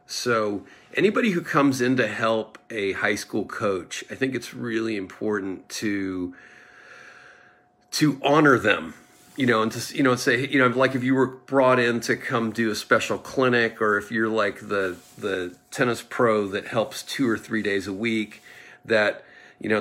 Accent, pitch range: American, 110-145 Hz